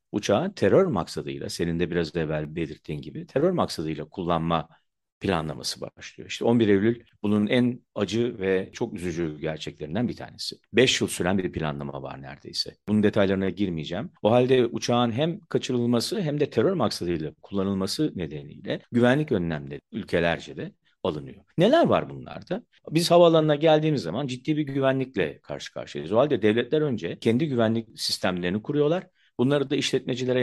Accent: native